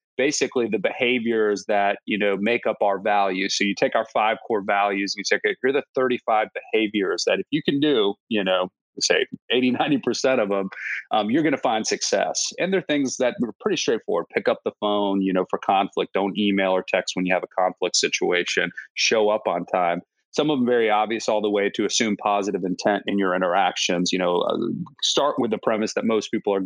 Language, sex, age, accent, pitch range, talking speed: English, male, 30-49, American, 100-115 Hz, 220 wpm